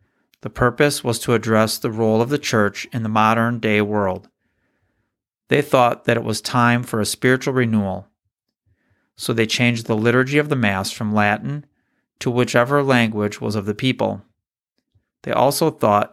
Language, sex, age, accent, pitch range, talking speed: English, male, 40-59, American, 105-130 Hz, 165 wpm